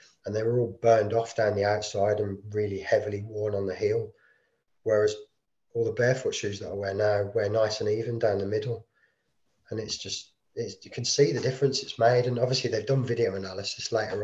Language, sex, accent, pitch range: English, male, British, 105-130 Hz